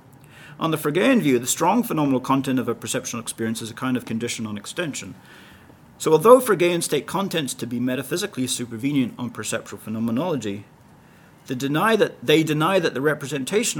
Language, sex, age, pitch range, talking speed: English, male, 40-59, 115-150 Hz, 160 wpm